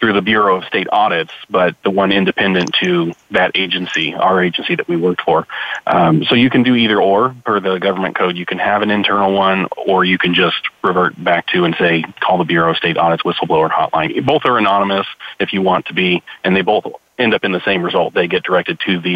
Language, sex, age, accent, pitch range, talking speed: English, male, 30-49, American, 90-105 Hz, 235 wpm